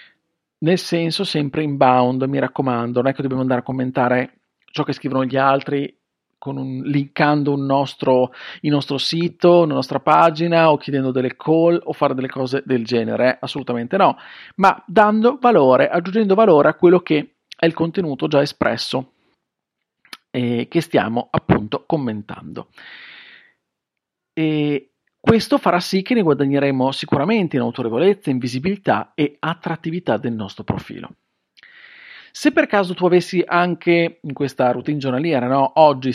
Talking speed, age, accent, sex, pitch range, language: 150 wpm, 40-59, native, male, 130-175 Hz, Italian